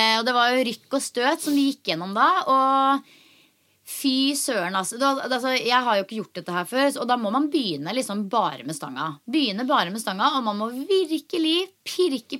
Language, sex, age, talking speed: English, female, 20-39, 200 wpm